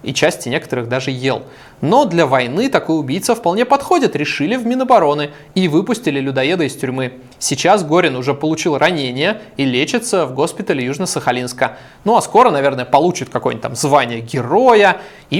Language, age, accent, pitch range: Russian, 20-39, native, 115-145 Hz